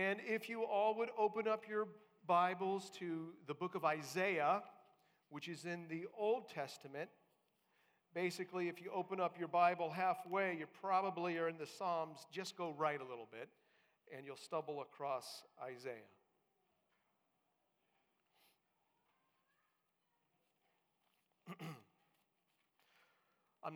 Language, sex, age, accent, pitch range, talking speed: English, male, 50-69, American, 165-205 Hz, 115 wpm